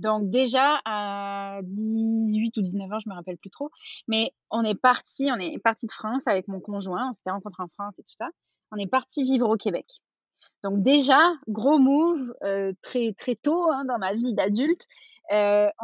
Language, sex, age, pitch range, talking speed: French, female, 20-39, 205-260 Hz, 200 wpm